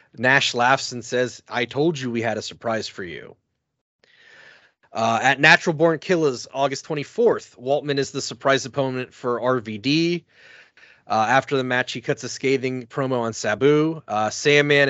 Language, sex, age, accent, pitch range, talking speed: English, male, 30-49, American, 125-155 Hz, 160 wpm